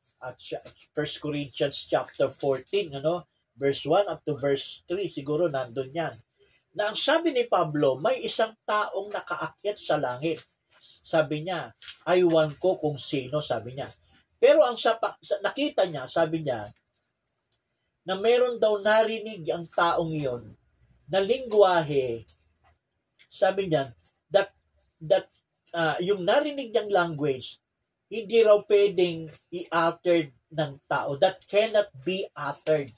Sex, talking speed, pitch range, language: male, 130 wpm, 145-200 Hz, Filipino